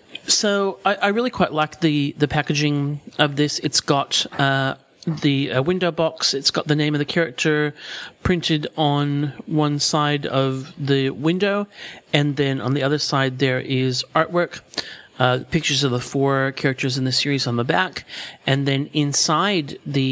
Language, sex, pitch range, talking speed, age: English, male, 135-160 Hz, 170 wpm, 40-59